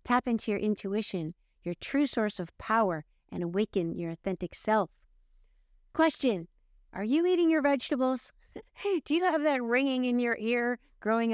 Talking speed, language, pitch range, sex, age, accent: 160 wpm, English, 205-270 Hz, female, 50-69, American